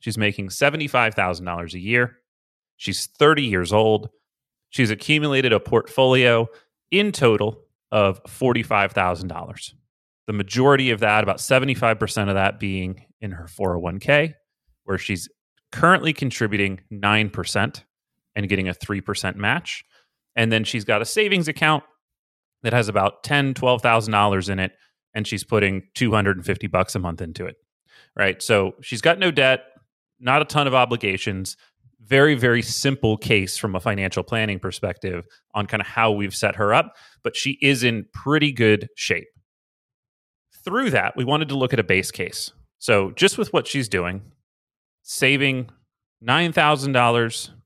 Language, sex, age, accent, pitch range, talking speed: English, male, 30-49, American, 100-130 Hz, 145 wpm